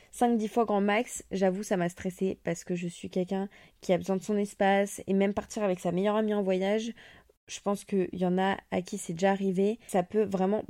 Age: 20-39